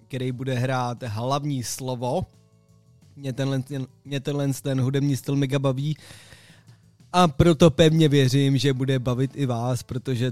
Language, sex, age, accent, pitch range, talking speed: Czech, male, 20-39, native, 125-140 Hz, 140 wpm